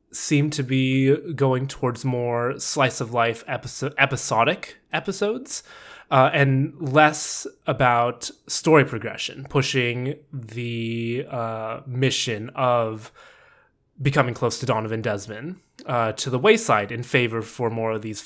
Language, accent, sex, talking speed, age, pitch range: English, American, male, 115 wpm, 20-39, 120-155 Hz